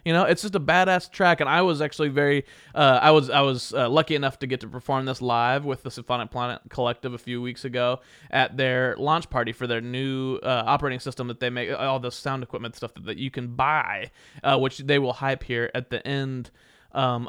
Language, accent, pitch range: English, American, 125-155 Hz